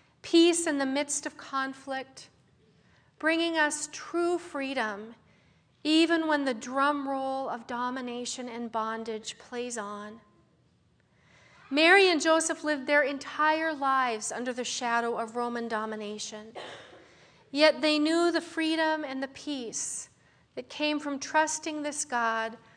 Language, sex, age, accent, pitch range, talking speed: English, female, 40-59, American, 235-295 Hz, 125 wpm